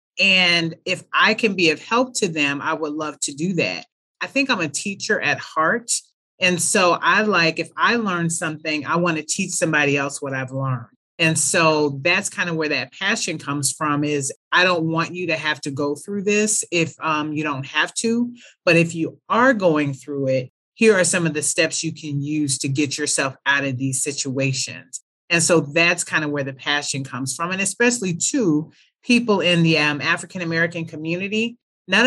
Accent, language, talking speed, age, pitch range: American, English, 205 wpm, 30-49, 145-180 Hz